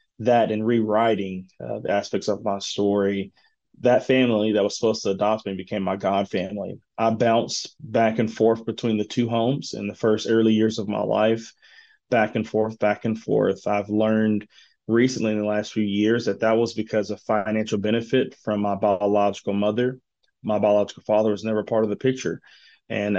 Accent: American